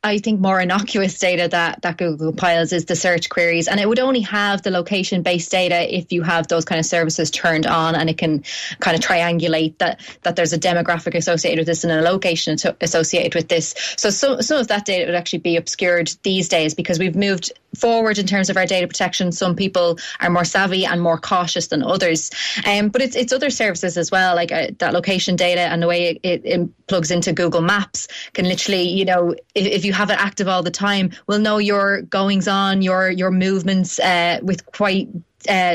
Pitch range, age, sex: 175-200 Hz, 20-39, female